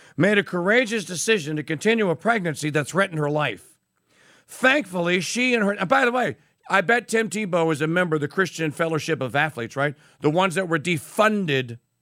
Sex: male